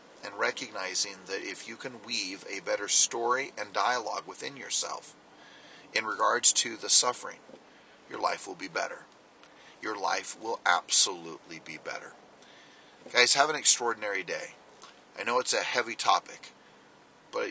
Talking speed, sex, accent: 145 wpm, male, American